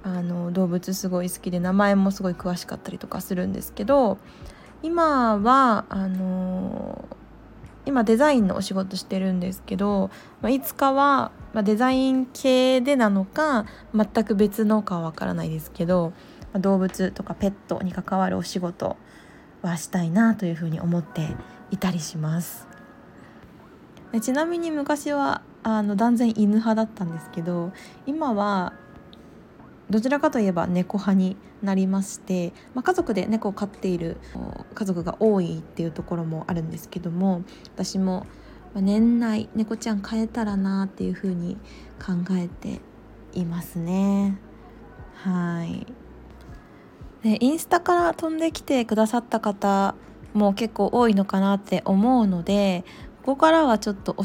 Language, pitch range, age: Japanese, 185-230 Hz, 20-39